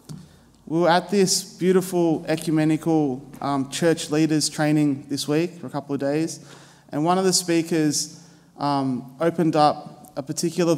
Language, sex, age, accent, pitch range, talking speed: English, male, 20-39, Australian, 145-165 Hz, 150 wpm